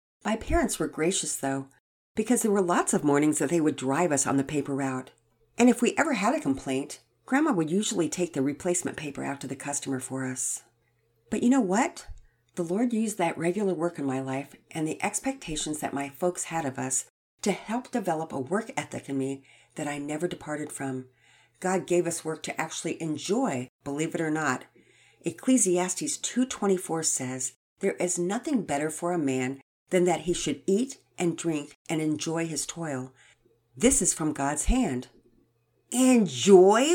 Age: 50-69